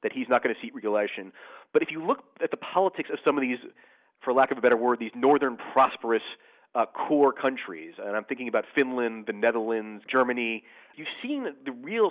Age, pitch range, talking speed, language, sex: 30-49, 125-190 Hz, 210 wpm, English, male